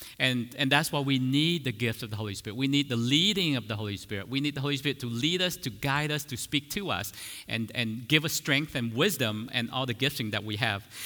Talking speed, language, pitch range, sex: 265 wpm, English, 115-140 Hz, male